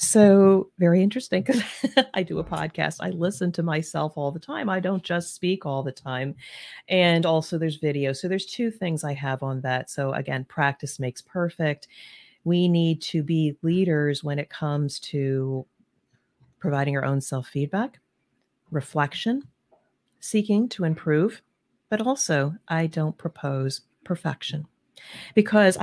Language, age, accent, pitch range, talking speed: English, 40-59, American, 145-210 Hz, 145 wpm